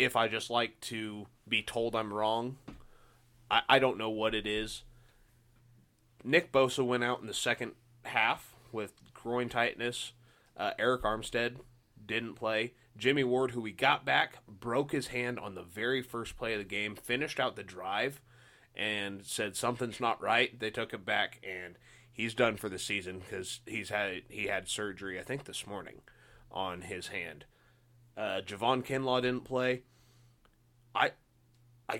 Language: English